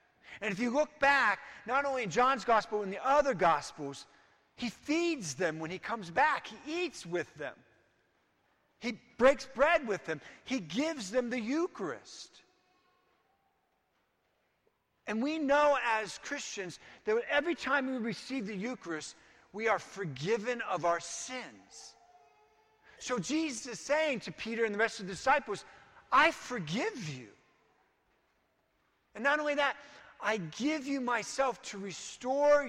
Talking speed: 145 wpm